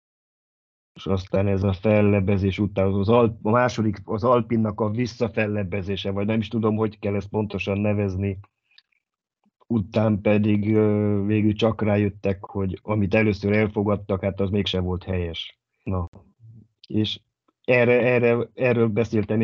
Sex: male